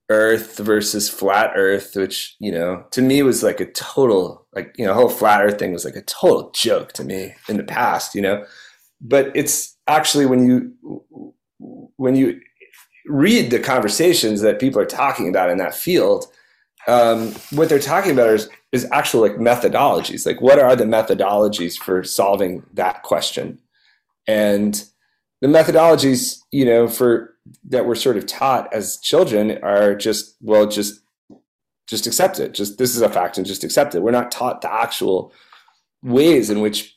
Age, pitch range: 30-49, 105-135 Hz